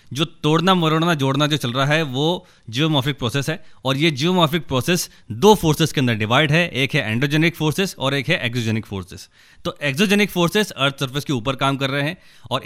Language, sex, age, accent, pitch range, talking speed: Hindi, male, 20-39, native, 130-165 Hz, 205 wpm